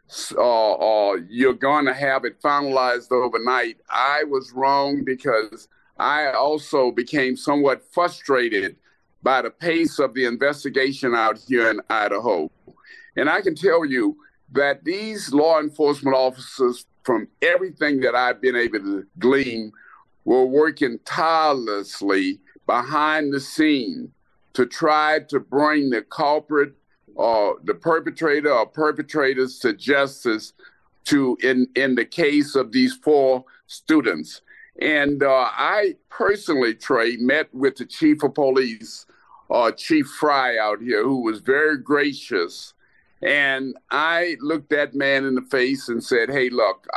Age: 50-69